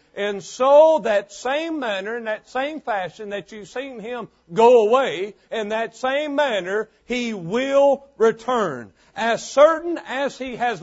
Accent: American